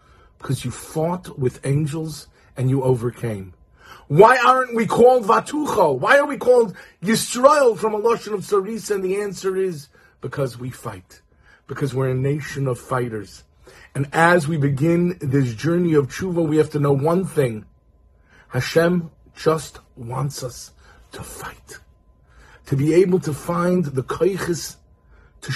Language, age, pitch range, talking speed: English, 40-59, 110-165 Hz, 150 wpm